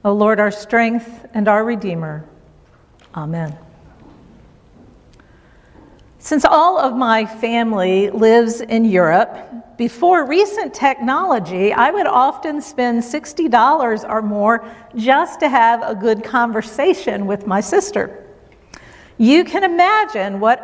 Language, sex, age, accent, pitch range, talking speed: English, female, 50-69, American, 205-270 Hz, 115 wpm